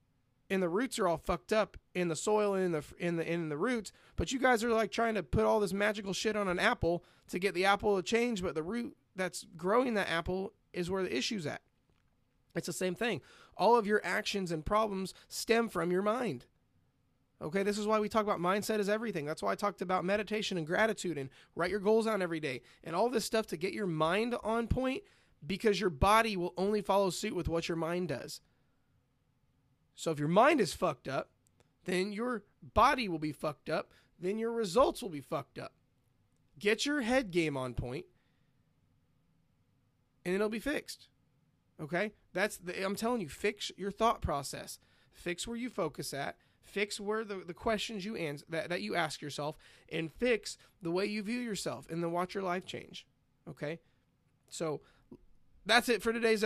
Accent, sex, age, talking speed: American, male, 30-49, 200 wpm